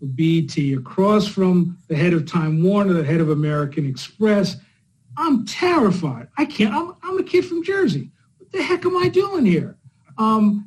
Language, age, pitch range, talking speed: English, 50-69, 155-210 Hz, 175 wpm